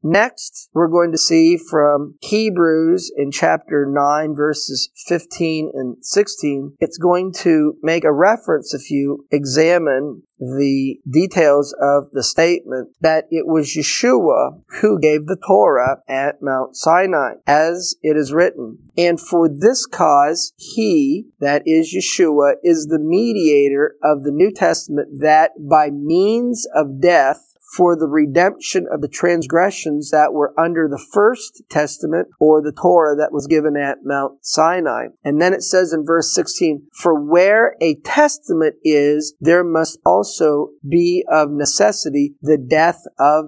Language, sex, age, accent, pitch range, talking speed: English, male, 40-59, American, 145-170 Hz, 145 wpm